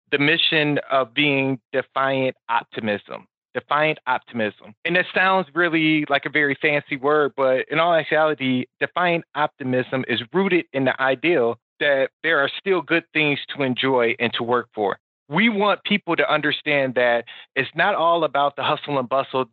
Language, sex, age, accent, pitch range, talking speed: English, male, 30-49, American, 125-155 Hz, 165 wpm